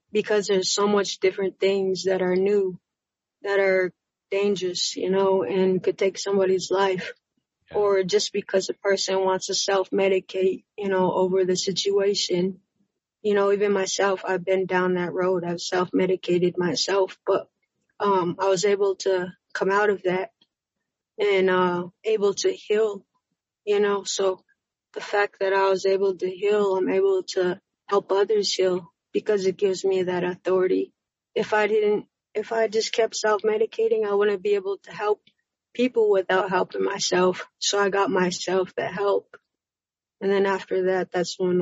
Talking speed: 160 wpm